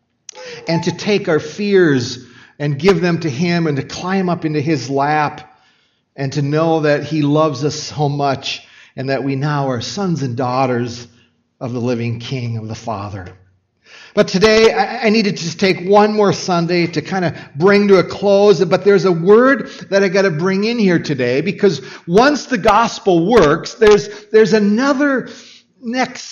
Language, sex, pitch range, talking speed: English, male, 155-220 Hz, 180 wpm